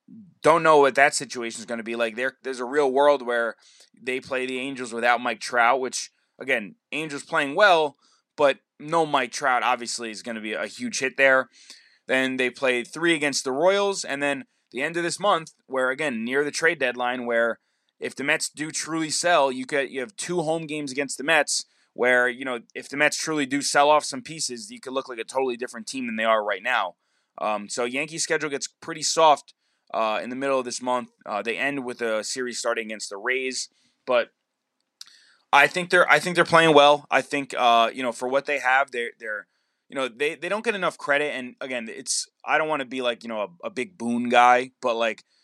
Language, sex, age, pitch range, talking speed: English, male, 20-39, 125-155 Hz, 230 wpm